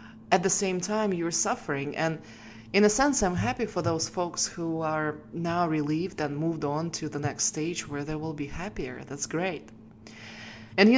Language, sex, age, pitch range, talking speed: English, female, 20-39, 145-185 Hz, 190 wpm